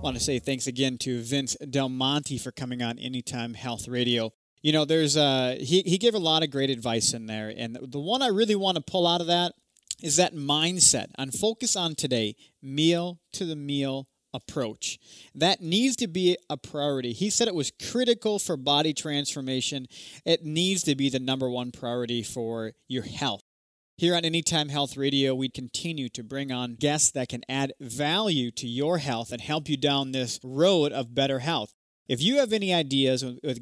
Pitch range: 125-155 Hz